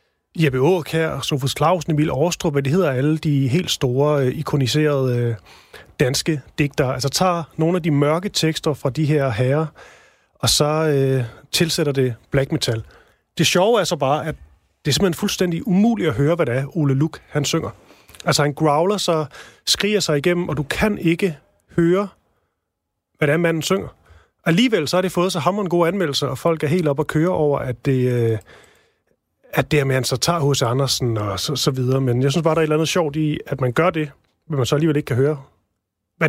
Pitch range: 130-170 Hz